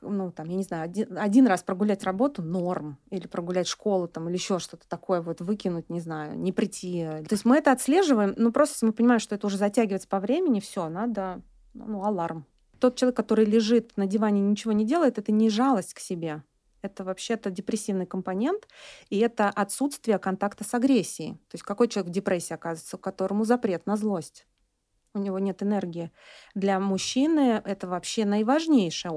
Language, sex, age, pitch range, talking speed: Russian, female, 30-49, 185-225 Hz, 185 wpm